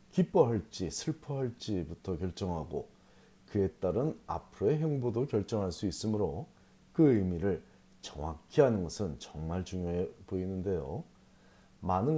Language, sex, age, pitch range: Korean, male, 40-59, 90-130 Hz